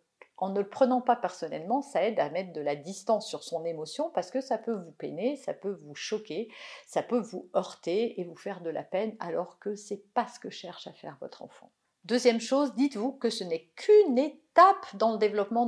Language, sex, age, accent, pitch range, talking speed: French, female, 50-69, French, 200-250 Hz, 220 wpm